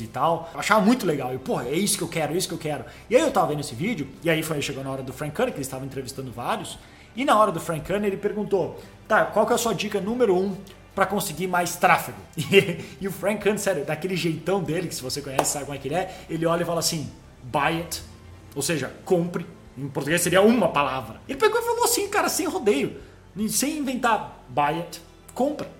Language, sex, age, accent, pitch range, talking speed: Portuguese, male, 20-39, Brazilian, 160-215 Hz, 250 wpm